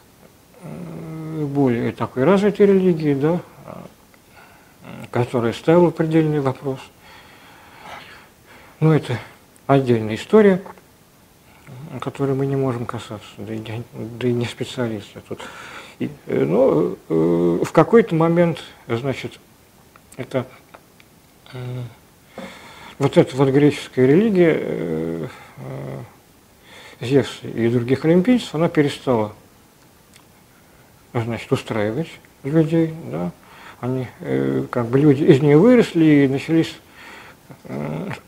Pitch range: 115-160 Hz